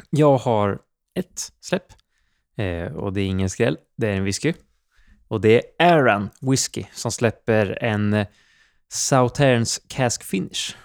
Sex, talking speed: male, 140 wpm